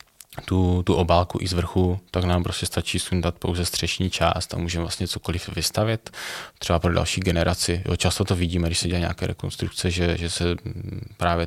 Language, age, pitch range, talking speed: Czech, 20-39, 85-95 Hz, 185 wpm